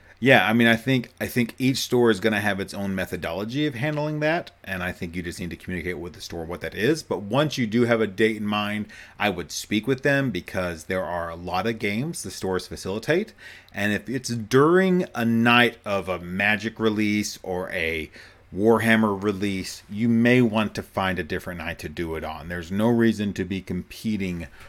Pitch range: 95-120 Hz